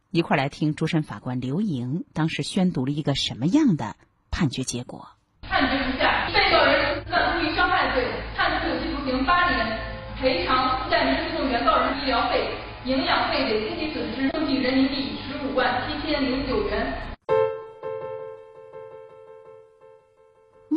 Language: Chinese